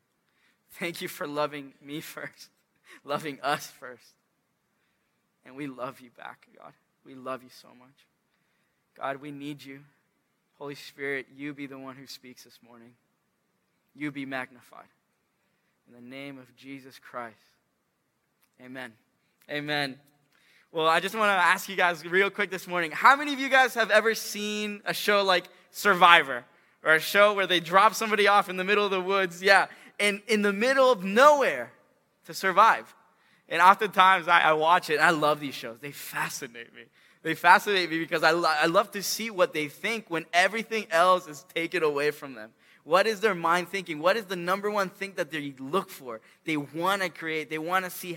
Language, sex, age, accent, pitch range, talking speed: English, male, 20-39, American, 145-200 Hz, 185 wpm